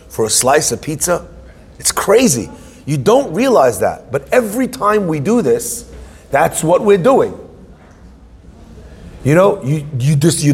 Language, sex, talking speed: English, male, 155 wpm